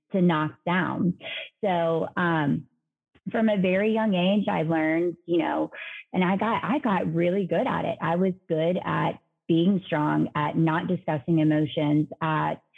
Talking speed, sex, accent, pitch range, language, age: 160 wpm, female, American, 165-185 Hz, English, 30-49